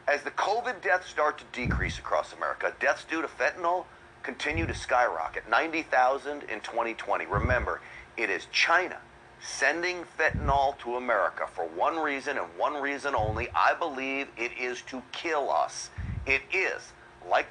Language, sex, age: English, male, 40-59